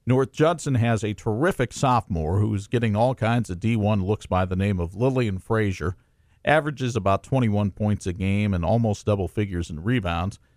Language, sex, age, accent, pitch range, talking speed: English, male, 50-69, American, 110-145 Hz, 175 wpm